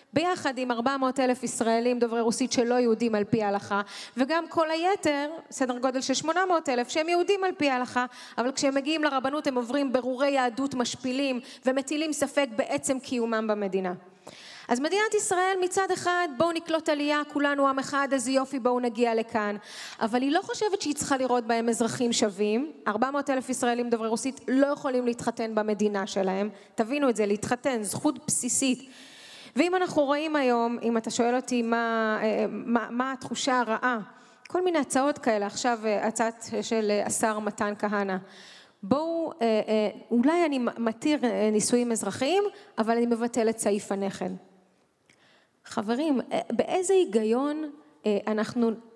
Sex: female